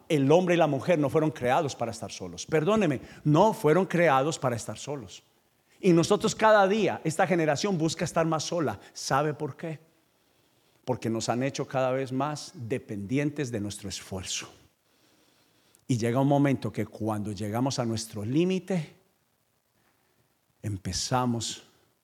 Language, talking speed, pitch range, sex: Spanish, 145 wpm, 115-160 Hz, male